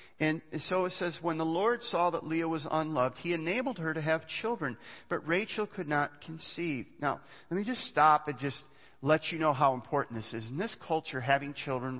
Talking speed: 210 wpm